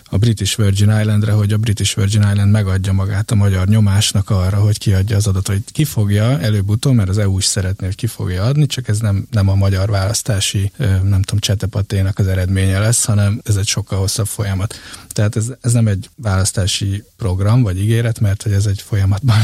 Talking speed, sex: 200 wpm, male